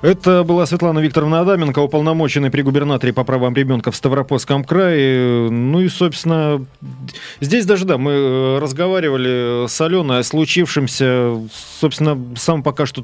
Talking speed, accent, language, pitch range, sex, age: 140 wpm, native, Russian, 120-155 Hz, male, 30-49